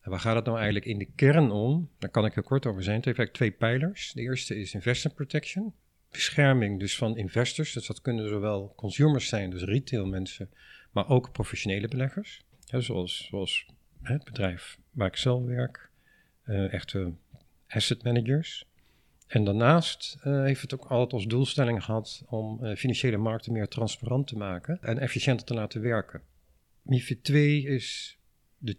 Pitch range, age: 105-130 Hz, 50-69